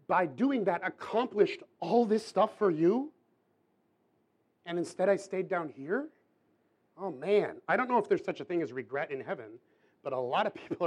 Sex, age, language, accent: male, 40-59, English, American